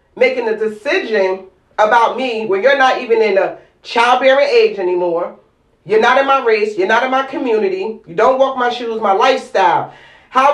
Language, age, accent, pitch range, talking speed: English, 40-59, American, 230-290 Hz, 180 wpm